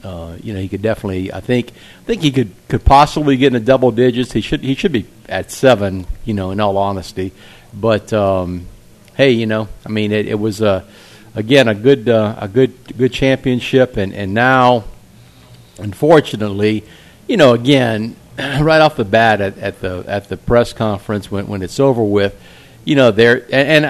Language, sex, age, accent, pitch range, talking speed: English, male, 50-69, American, 100-125 Hz, 195 wpm